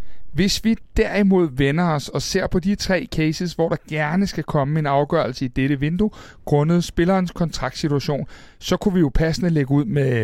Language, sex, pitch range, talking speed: Danish, male, 140-185 Hz, 190 wpm